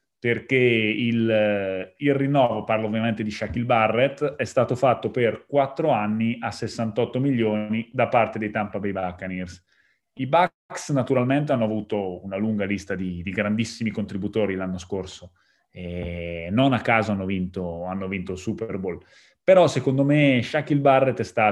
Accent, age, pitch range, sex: native, 20-39, 100-120 Hz, male